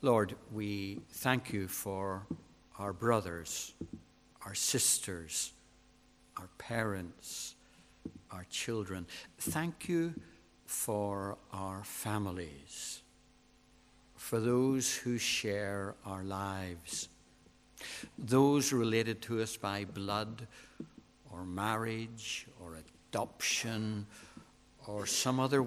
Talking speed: 85 wpm